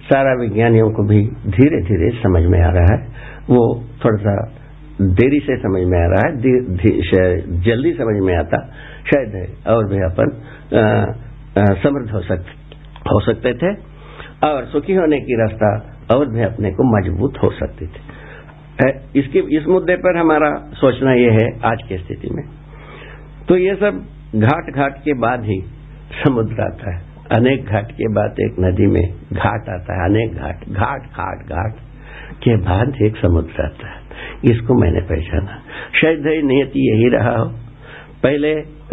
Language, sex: Hindi, male